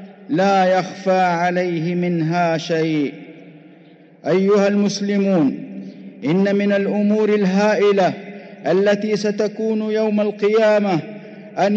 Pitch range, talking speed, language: 195-220 Hz, 80 wpm, English